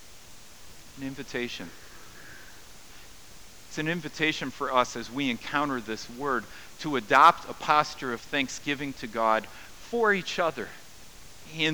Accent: American